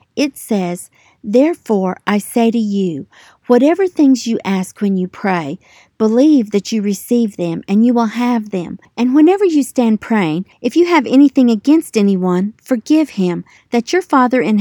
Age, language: 50-69, English